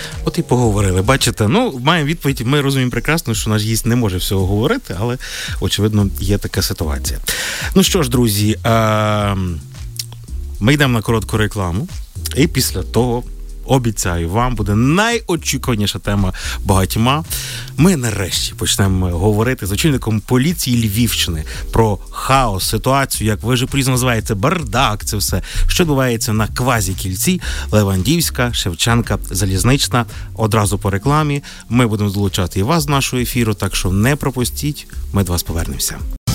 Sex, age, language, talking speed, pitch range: male, 30-49, Ukrainian, 140 wpm, 100-130 Hz